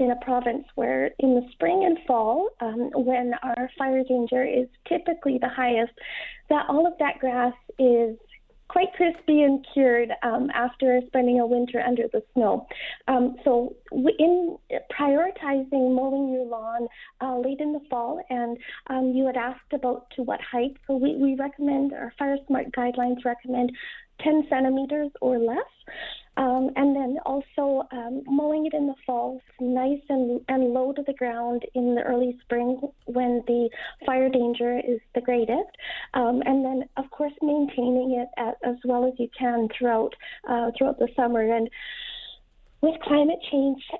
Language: English